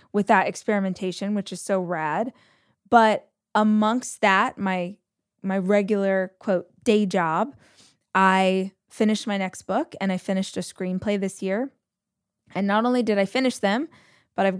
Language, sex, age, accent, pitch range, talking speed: English, female, 20-39, American, 180-205 Hz, 150 wpm